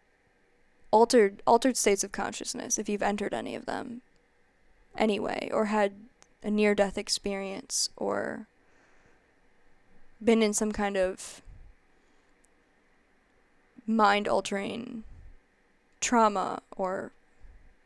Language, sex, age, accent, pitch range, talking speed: English, female, 20-39, American, 200-230 Hz, 85 wpm